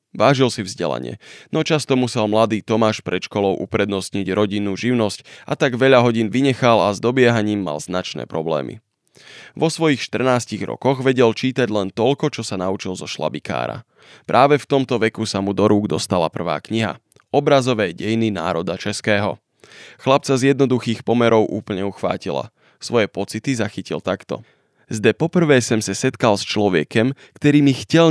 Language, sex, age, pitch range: Slovak, male, 20-39, 105-130 Hz